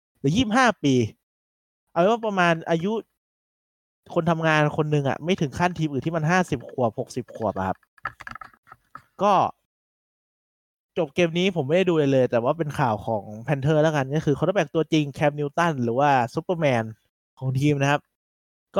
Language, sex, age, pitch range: Thai, male, 20-39, 125-165 Hz